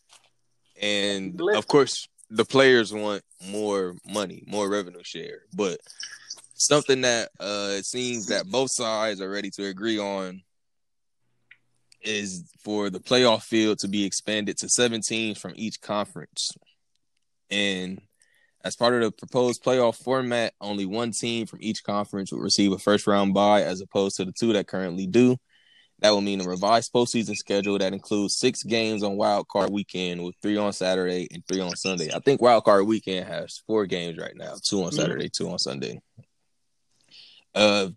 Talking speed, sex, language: 170 wpm, male, English